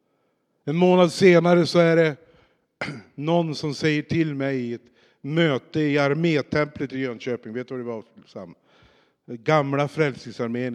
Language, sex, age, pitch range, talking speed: Swedish, male, 50-69, 130-180 Hz, 135 wpm